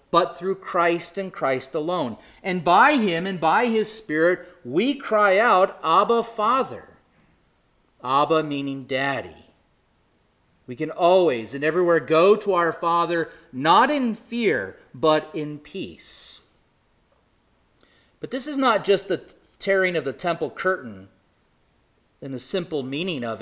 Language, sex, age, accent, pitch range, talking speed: English, male, 40-59, American, 140-200 Hz, 135 wpm